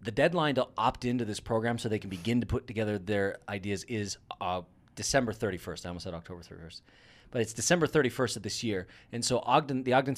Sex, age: male, 30-49